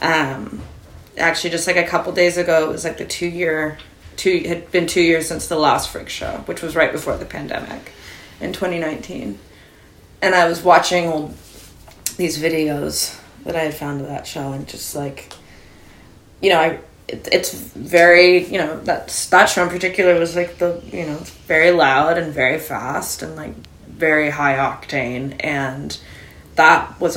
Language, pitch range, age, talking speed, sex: English, 140-175 Hz, 20-39, 180 wpm, female